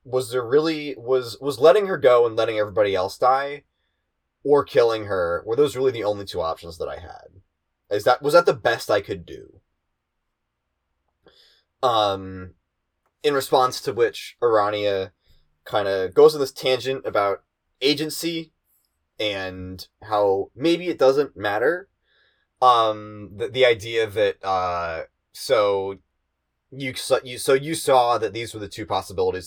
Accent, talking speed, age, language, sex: American, 150 wpm, 20-39, English, male